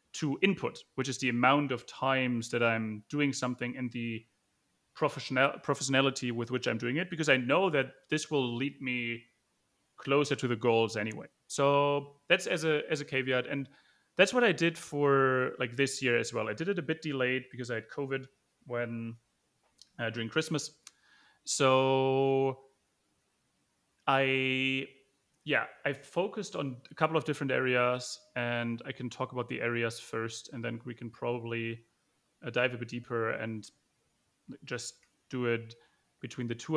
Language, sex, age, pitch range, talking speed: English, male, 30-49, 120-150 Hz, 165 wpm